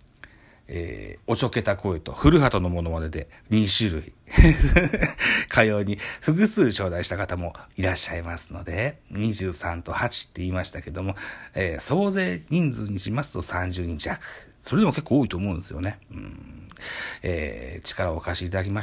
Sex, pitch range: male, 90-115 Hz